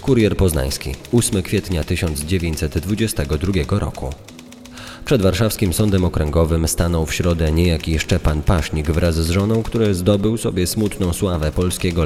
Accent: native